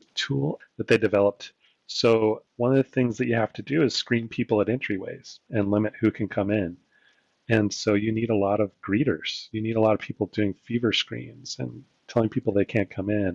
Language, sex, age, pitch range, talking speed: English, male, 30-49, 95-115 Hz, 220 wpm